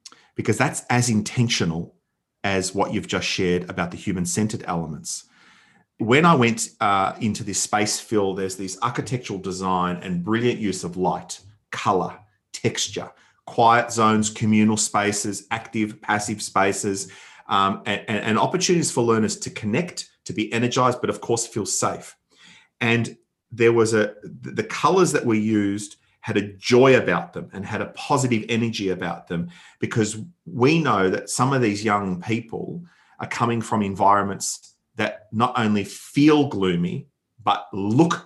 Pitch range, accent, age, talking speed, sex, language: 100-120 Hz, Australian, 40-59, 150 wpm, male, English